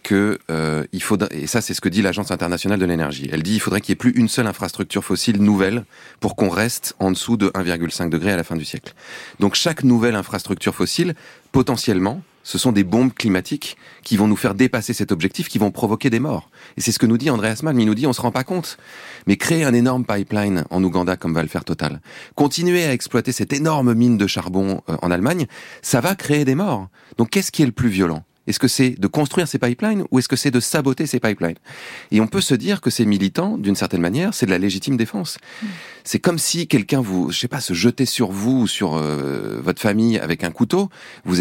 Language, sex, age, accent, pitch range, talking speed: French, male, 30-49, French, 95-135 Hz, 240 wpm